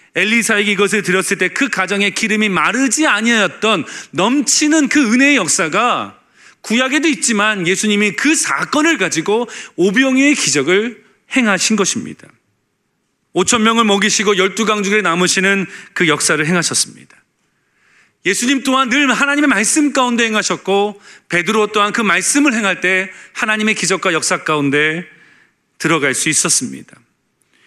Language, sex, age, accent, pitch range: Korean, male, 40-59, native, 195-250 Hz